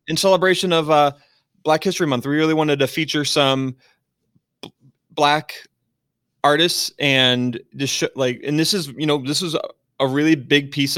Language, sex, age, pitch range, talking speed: English, male, 20-39, 120-145 Hz, 160 wpm